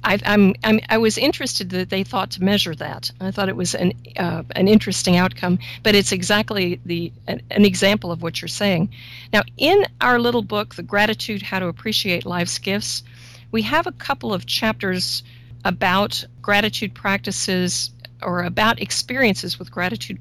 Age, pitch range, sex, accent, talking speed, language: 50-69, 165-210 Hz, female, American, 170 wpm, English